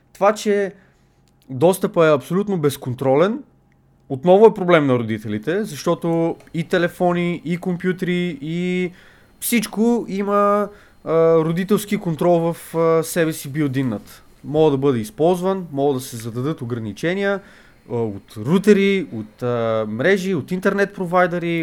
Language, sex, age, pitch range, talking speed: Bulgarian, male, 30-49, 145-195 Hz, 125 wpm